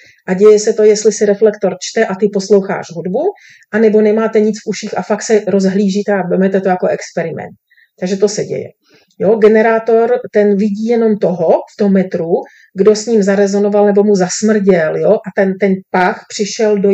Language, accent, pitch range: Czech, native, 190-220 Hz